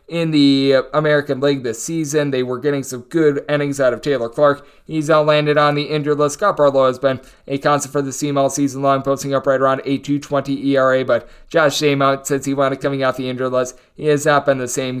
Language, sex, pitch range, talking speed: English, male, 135-150 Hz, 235 wpm